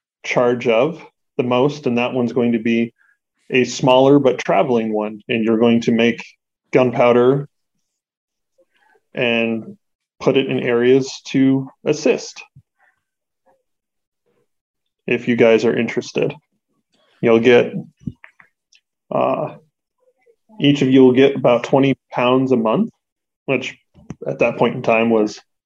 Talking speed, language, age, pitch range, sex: 125 wpm, English, 20-39, 115-135 Hz, male